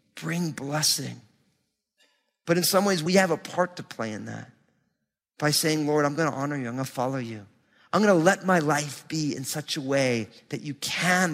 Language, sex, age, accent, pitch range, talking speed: English, male, 40-59, American, 135-175 Hz, 215 wpm